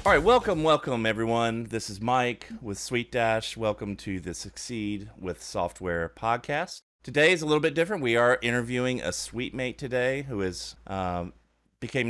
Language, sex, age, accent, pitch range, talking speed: English, male, 30-49, American, 90-115 Hz, 170 wpm